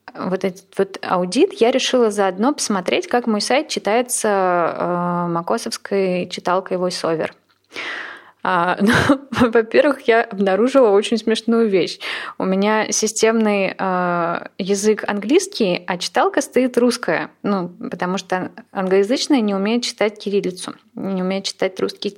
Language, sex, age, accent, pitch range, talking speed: Russian, female, 20-39, native, 180-235 Hz, 120 wpm